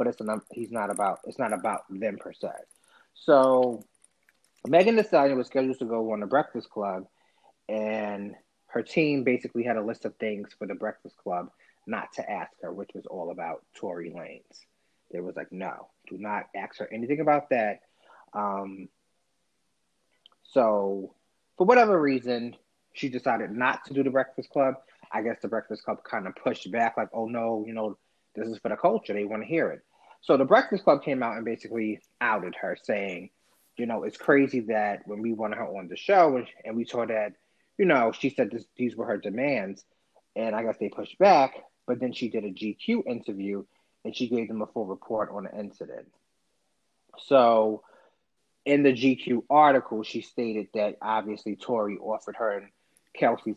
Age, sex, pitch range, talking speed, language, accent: 30-49, male, 105-130 Hz, 185 wpm, English, American